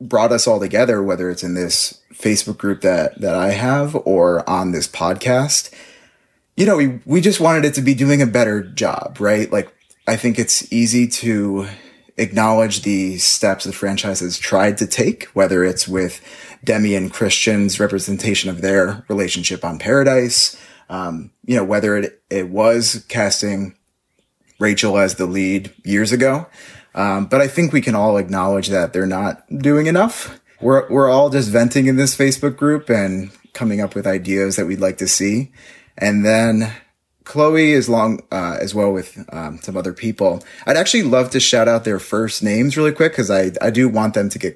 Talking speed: 185 wpm